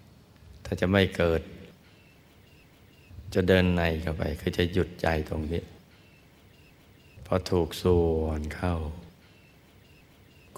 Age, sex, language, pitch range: 60-79, male, Thai, 80-95 Hz